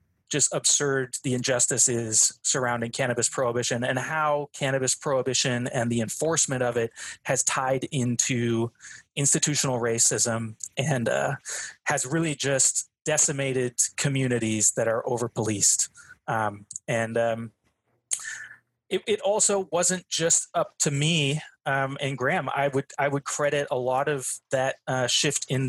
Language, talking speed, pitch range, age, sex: English, 130 wpm, 125-145 Hz, 20-39, male